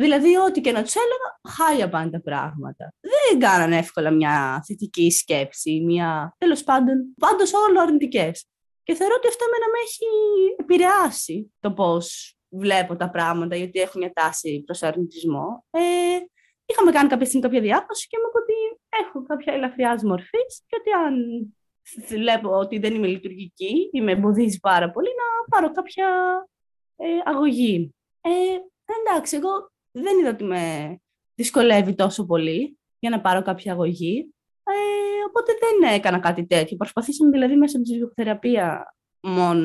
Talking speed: 145 wpm